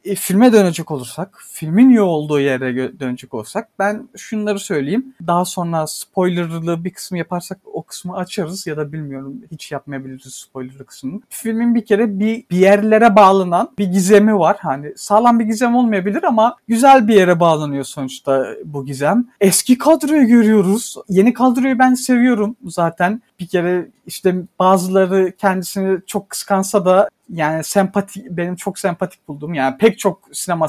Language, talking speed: Turkish, 150 wpm